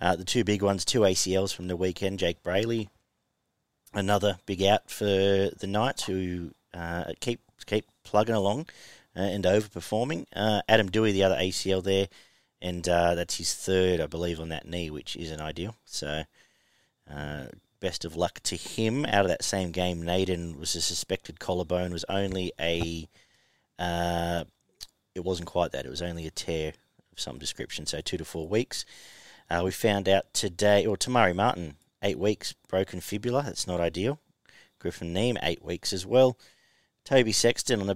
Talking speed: 175 wpm